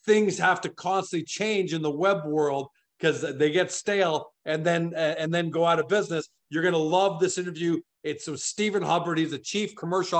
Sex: male